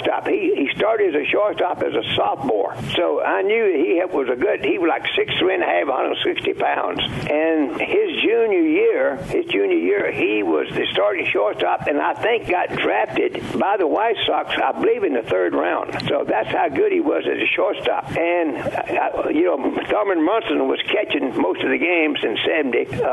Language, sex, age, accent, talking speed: English, male, 60-79, American, 210 wpm